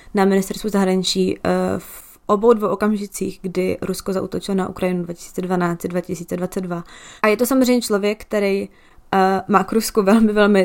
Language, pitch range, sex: Czech, 190-215 Hz, female